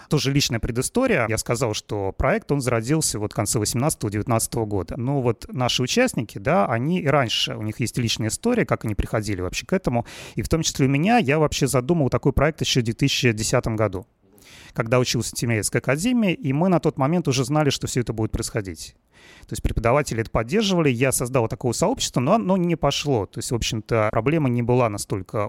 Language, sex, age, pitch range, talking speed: Russian, male, 30-49, 110-145 Hz, 205 wpm